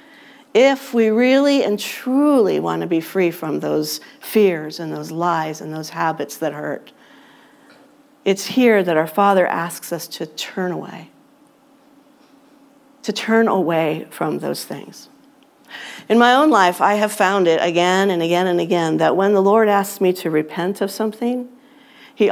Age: 50-69